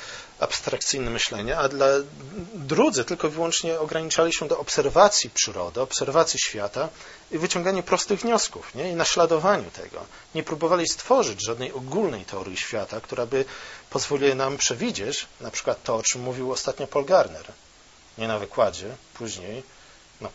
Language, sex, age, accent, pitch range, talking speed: Polish, male, 40-59, native, 115-170 Hz, 140 wpm